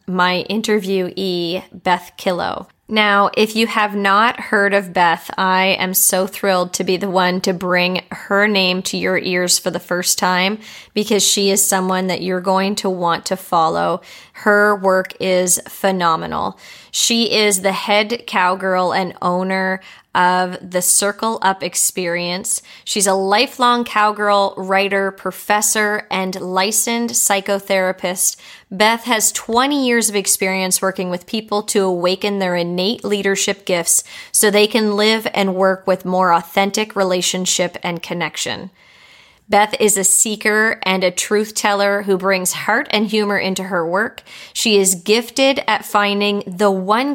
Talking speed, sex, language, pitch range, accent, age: 150 wpm, female, English, 185-210 Hz, American, 20-39